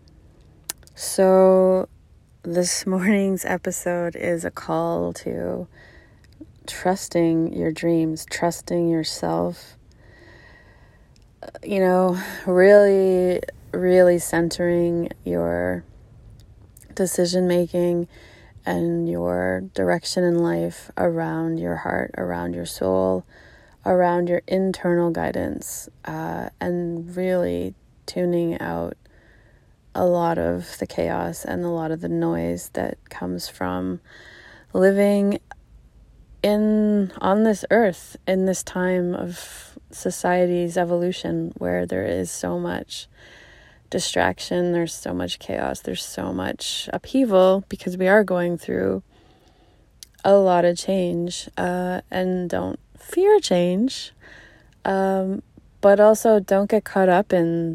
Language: English